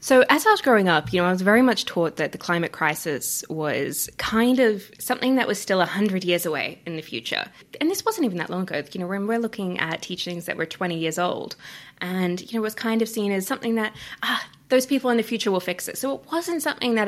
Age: 20-39